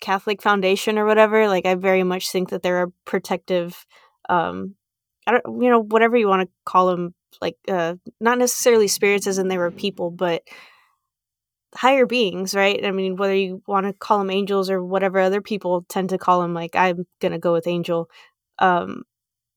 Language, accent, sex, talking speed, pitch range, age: English, American, female, 190 wpm, 180-210 Hz, 20-39